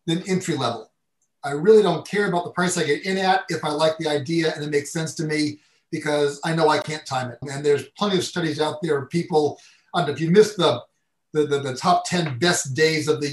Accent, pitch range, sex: American, 145-175 Hz, male